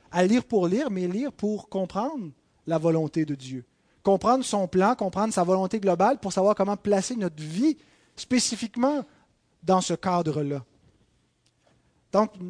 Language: French